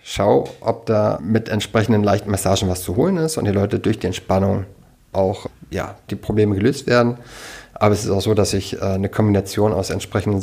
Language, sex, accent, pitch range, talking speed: German, male, German, 100-115 Hz, 200 wpm